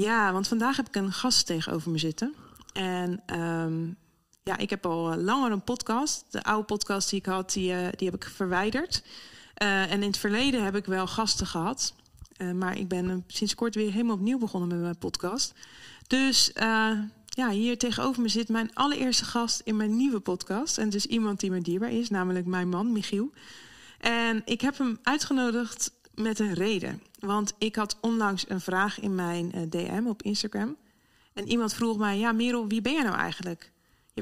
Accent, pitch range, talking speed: Dutch, 195-240 Hz, 195 wpm